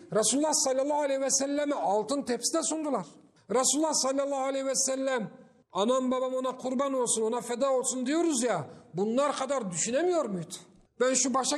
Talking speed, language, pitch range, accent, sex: 155 wpm, Turkish, 225-280 Hz, native, male